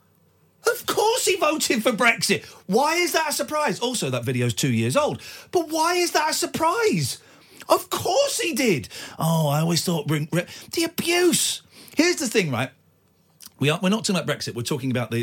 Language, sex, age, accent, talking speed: English, male, 40-59, British, 190 wpm